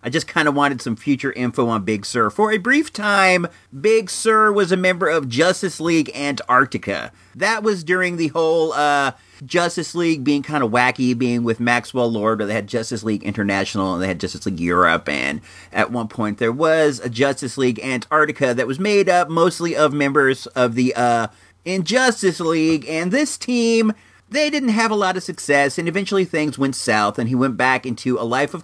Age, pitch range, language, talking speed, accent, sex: 40-59, 125-210 Hz, English, 205 wpm, American, male